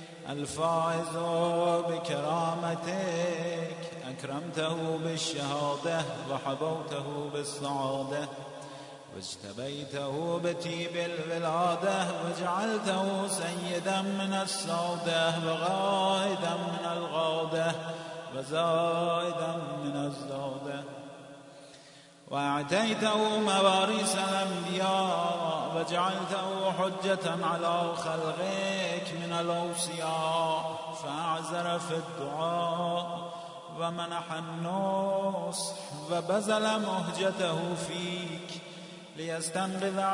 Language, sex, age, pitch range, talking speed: Persian, male, 30-49, 145-175 Hz, 55 wpm